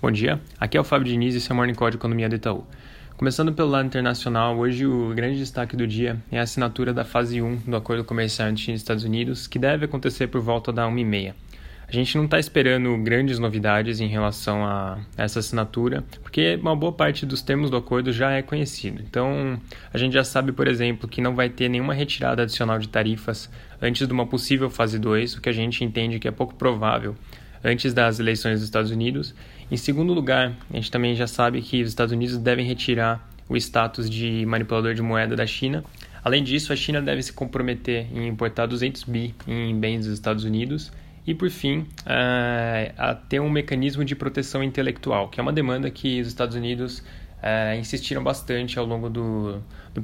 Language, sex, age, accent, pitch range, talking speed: Portuguese, male, 20-39, Brazilian, 115-130 Hz, 200 wpm